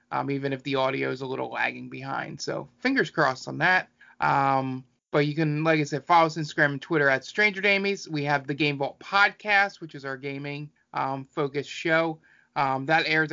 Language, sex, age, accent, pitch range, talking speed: English, male, 30-49, American, 135-175 Hz, 205 wpm